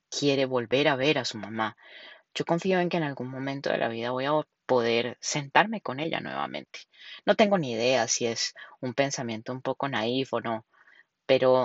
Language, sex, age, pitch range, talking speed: Spanish, female, 20-39, 125-155 Hz, 195 wpm